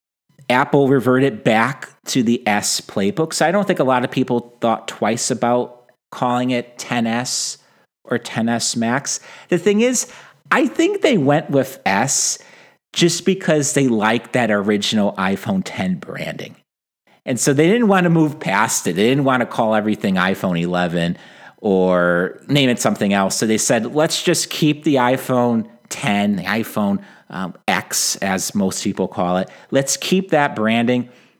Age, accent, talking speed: 40-59, American, 165 wpm